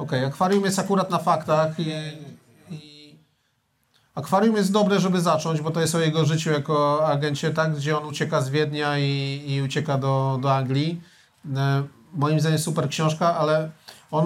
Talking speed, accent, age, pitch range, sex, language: 175 wpm, native, 40-59, 140-160 Hz, male, Polish